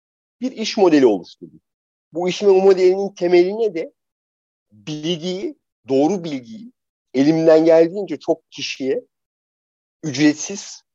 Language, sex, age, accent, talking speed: Turkish, male, 50-69, native, 95 wpm